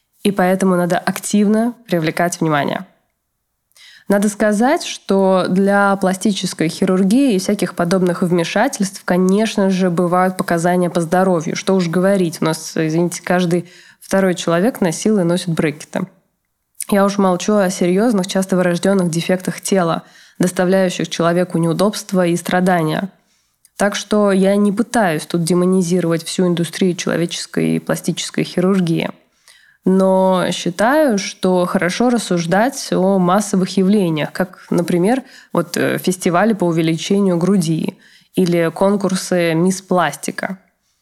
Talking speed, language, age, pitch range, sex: 115 wpm, Russian, 20-39, 175-200 Hz, female